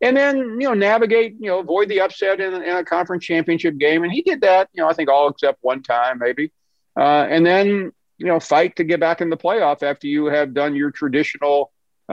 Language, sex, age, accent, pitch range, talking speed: English, male, 50-69, American, 130-175 Hz, 235 wpm